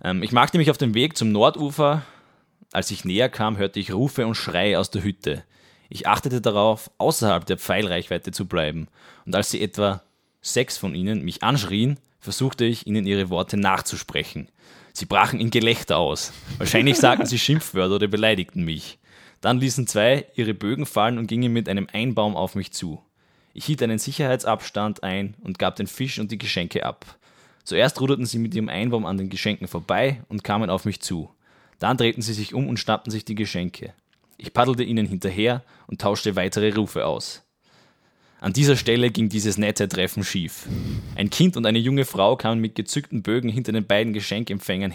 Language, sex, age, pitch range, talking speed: German, male, 20-39, 100-120 Hz, 185 wpm